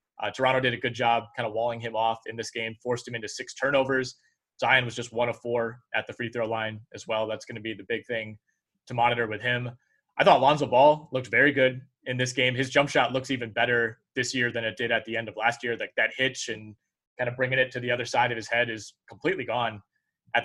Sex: male